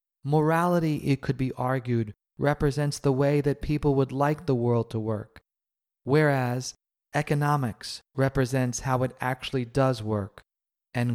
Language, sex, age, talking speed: English, male, 30-49, 135 wpm